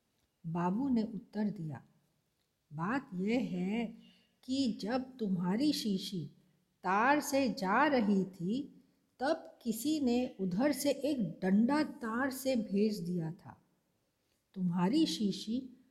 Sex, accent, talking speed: female, native, 115 wpm